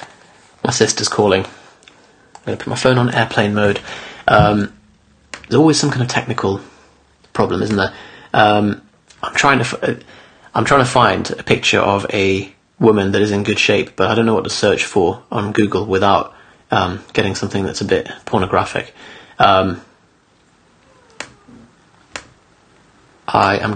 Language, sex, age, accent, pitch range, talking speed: English, male, 30-49, British, 100-115 Hz, 155 wpm